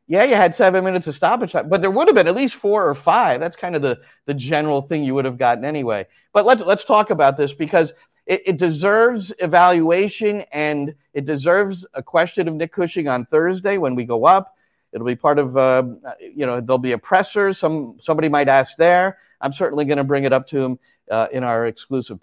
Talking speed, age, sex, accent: 225 wpm, 40-59, male, American